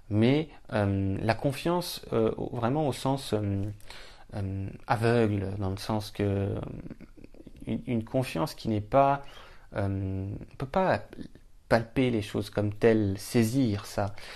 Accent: French